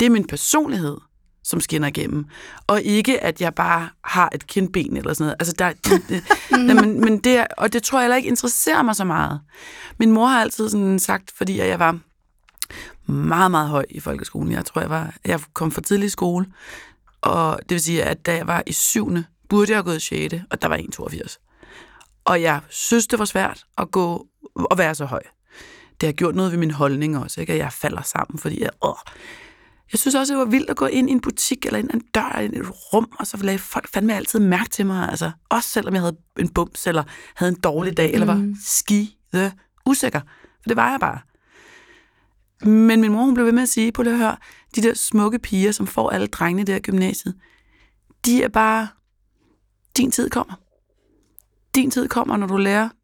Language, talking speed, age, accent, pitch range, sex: Danish, 220 wpm, 30-49, native, 170-240 Hz, female